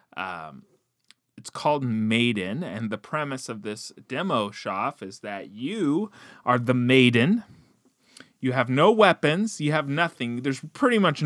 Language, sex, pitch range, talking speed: English, male, 110-145 Hz, 145 wpm